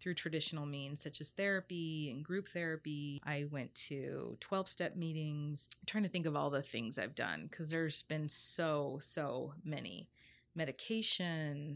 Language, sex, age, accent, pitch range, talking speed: English, female, 30-49, American, 150-185 Hz, 160 wpm